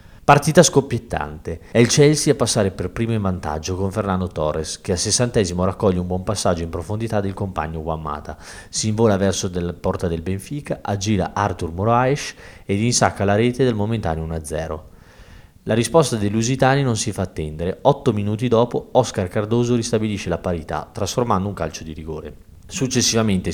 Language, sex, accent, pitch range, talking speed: Italian, male, native, 85-110 Hz, 165 wpm